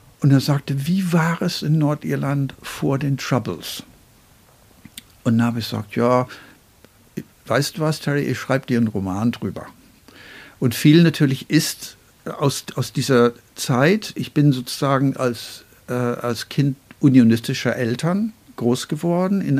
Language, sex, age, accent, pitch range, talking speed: German, male, 60-79, German, 115-140 Hz, 145 wpm